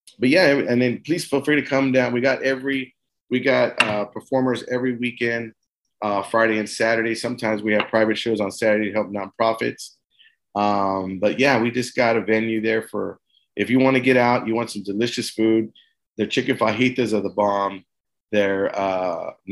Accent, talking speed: American, 190 wpm